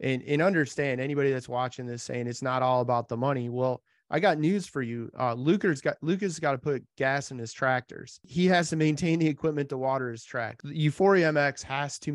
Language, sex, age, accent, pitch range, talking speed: English, male, 30-49, American, 130-155 Hz, 220 wpm